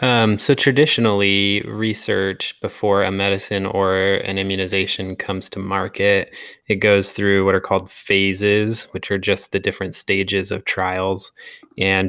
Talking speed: 145 wpm